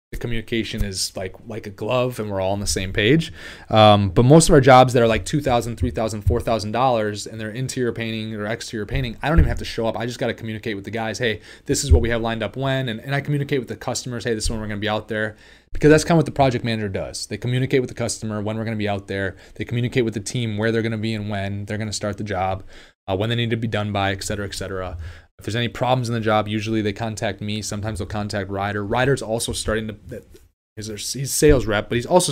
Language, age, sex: English, 20-39, male